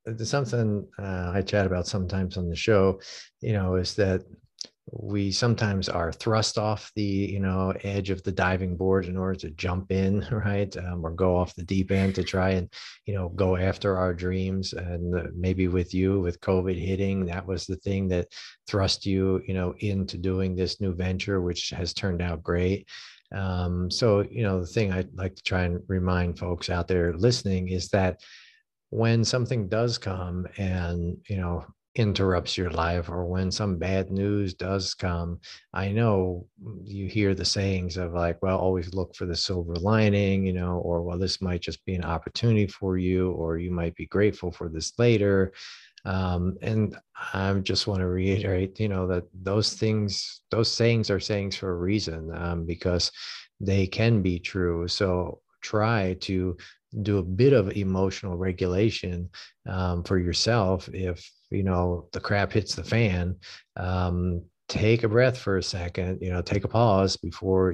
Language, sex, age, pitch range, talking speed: English, male, 40-59, 90-100 Hz, 180 wpm